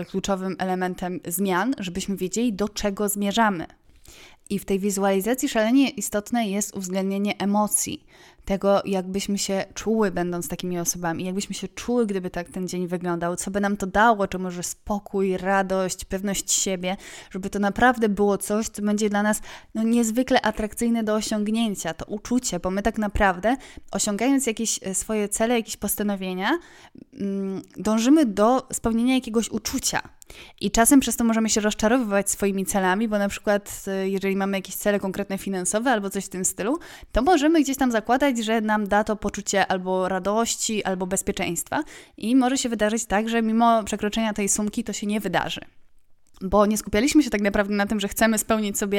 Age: 20-39